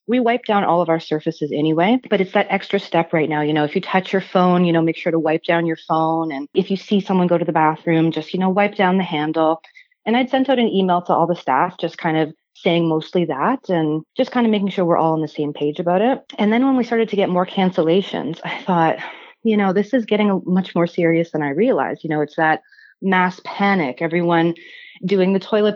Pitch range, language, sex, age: 160-195 Hz, English, female, 30-49